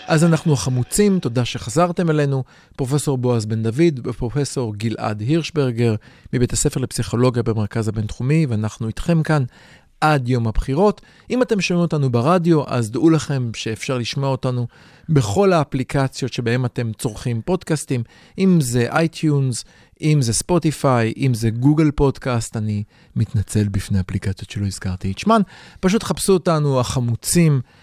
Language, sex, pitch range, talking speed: Hebrew, male, 115-160 Hz, 135 wpm